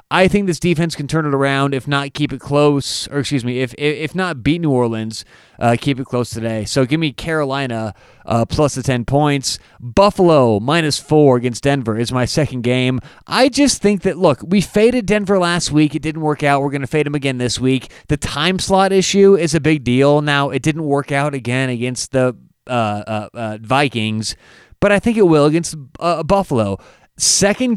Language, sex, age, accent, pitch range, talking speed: English, male, 30-49, American, 130-175 Hz, 210 wpm